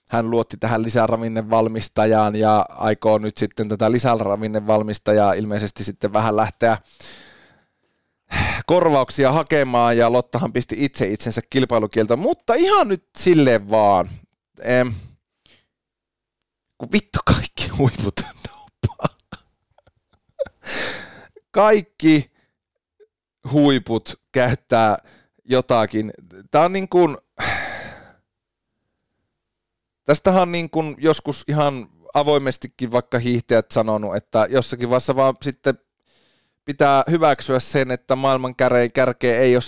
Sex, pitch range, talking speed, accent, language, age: male, 115-140 Hz, 95 wpm, native, Finnish, 30-49